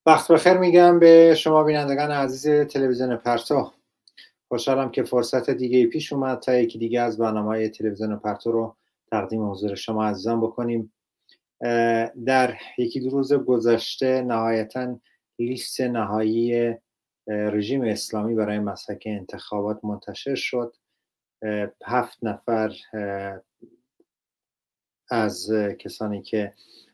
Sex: male